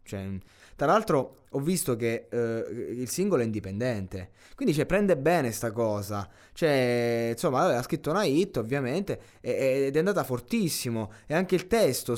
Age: 20-39